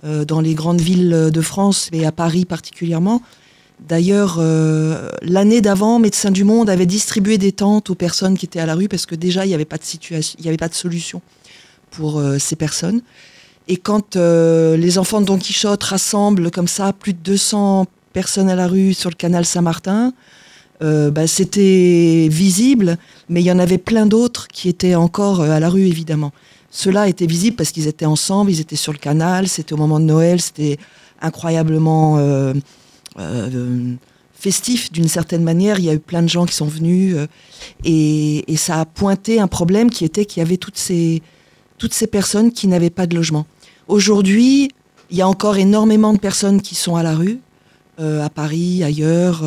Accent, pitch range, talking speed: French, 160-195 Hz, 185 wpm